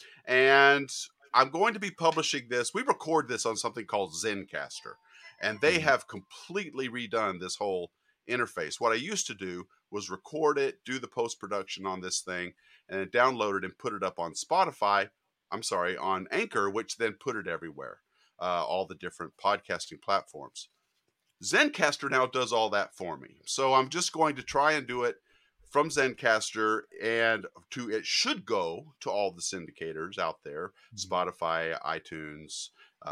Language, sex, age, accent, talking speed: English, male, 40-59, American, 165 wpm